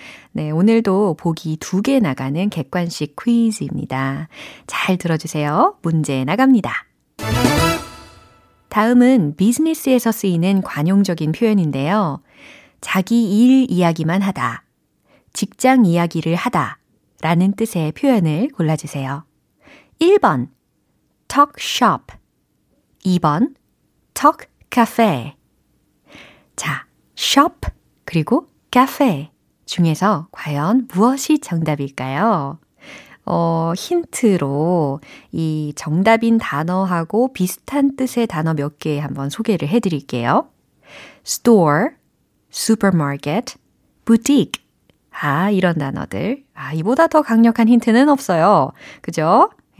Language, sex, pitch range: Korean, female, 160-235 Hz